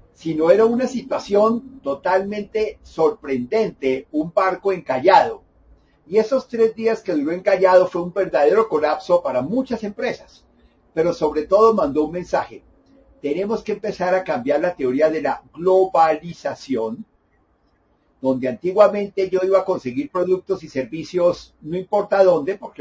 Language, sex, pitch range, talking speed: Spanish, male, 155-215 Hz, 135 wpm